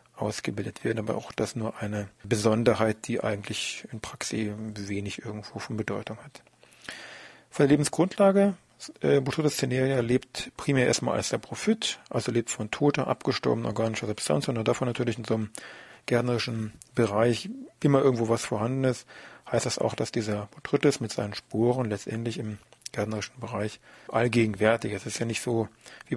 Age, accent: 40-59, German